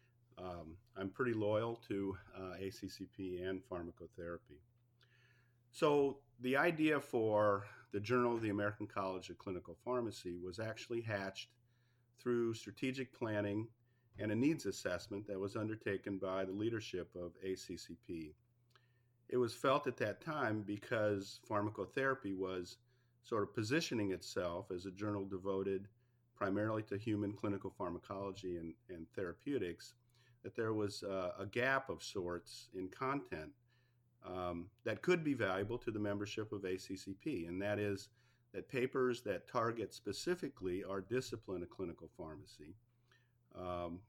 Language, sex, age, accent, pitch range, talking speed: English, male, 50-69, American, 95-120 Hz, 135 wpm